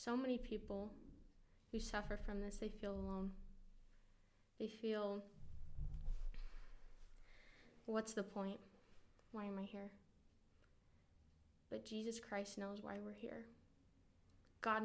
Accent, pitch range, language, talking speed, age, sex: American, 195-220 Hz, English, 110 wpm, 10-29, female